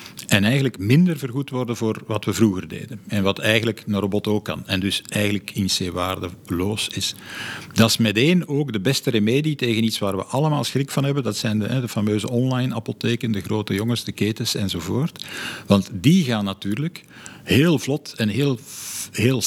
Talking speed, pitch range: 185 wpm, 100-135 Hz